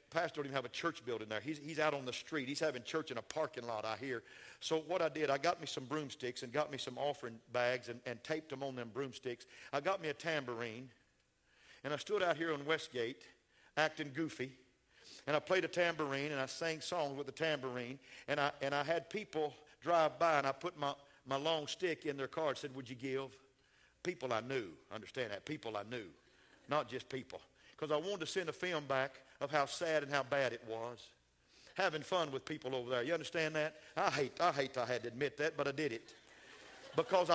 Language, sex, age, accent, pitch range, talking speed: English, male, 50-69, American, 135-170 Hz, 230 wpm